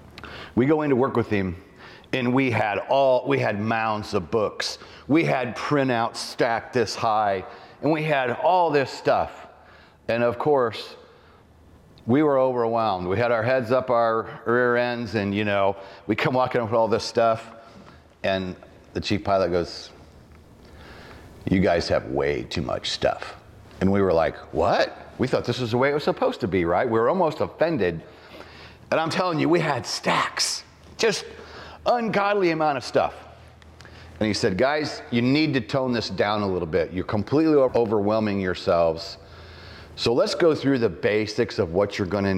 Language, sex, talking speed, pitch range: English, male, 175 wpm, 95-135 Hz